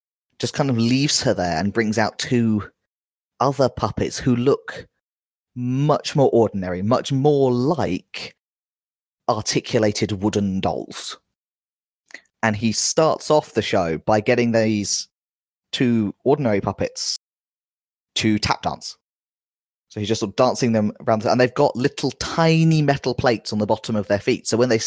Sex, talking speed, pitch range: male, 150 wpm, 100-125 Hz